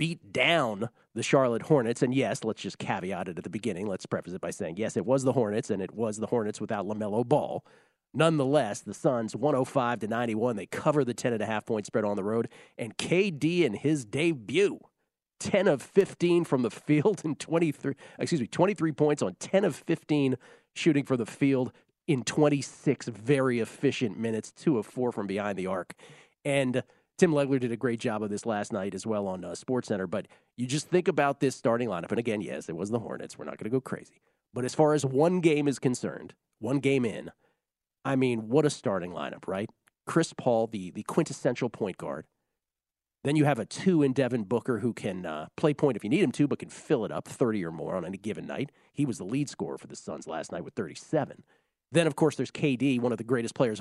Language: English